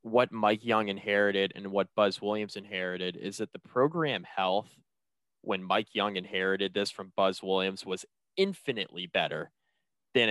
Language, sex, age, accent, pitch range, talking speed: English, male, 20-39, American, 100-120 Hz, 150 wpm